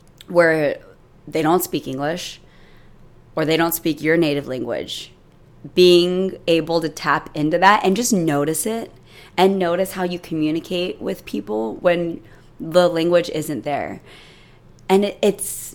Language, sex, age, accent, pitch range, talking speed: English, female, 20-39, American, 150-175 Hz, 135 wpm